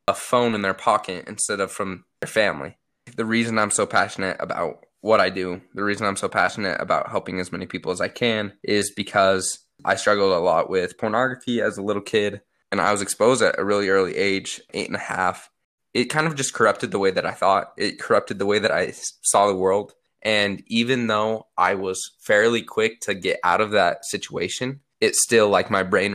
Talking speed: 215 wpm